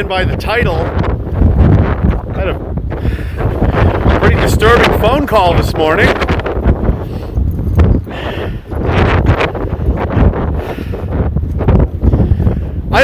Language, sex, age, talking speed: English, male, 40-59, 60 wpm